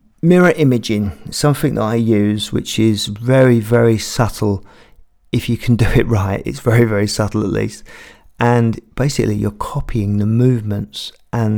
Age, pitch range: 50-69, 105-120 Hz